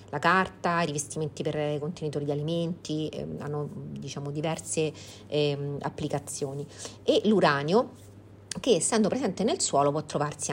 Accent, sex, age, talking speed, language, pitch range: native, female, 40-59, 135 wpm, Italian, 150-200 Hz